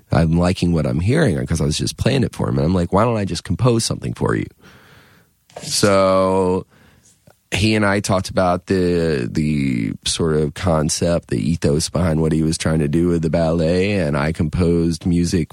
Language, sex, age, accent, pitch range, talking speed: English, male, 30-49, American, 80-95 Hz, 195 wpm